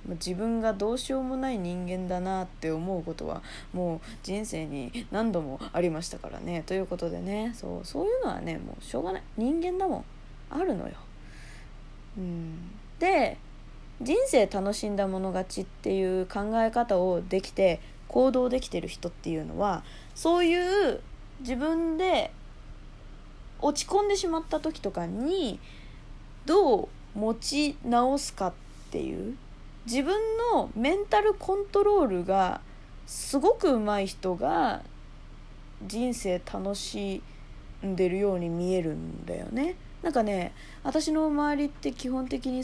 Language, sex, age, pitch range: Japanese, female, 20-39, 185-300 Hz